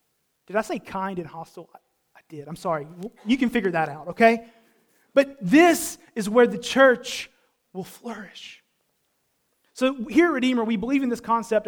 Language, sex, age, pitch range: English, male, 30-49, 205-260 Hz